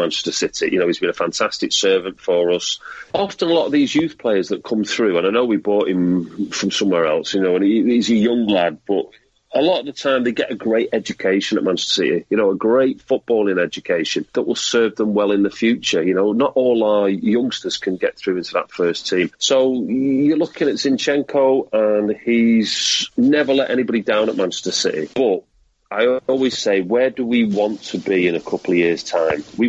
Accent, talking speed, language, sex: British, 220 wpm, English, male